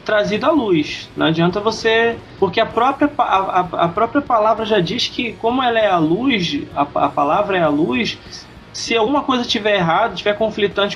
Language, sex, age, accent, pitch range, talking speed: Portuguese, male, 20-39, Brazilian, 165-235 Hz, 185 wpm